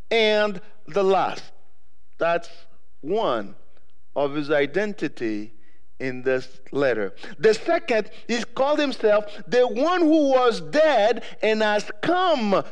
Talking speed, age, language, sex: 115 wpm, 50-69, English, male